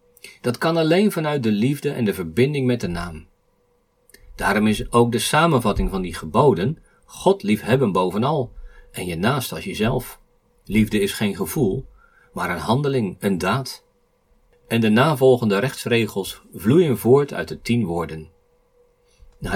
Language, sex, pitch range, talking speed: Dutch, male, 115-170 Hz, 145 wpm